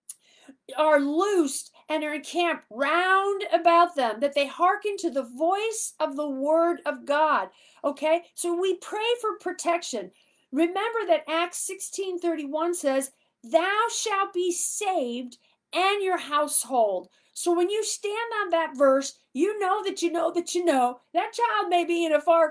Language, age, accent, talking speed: English, 40-59, American, 165 wpm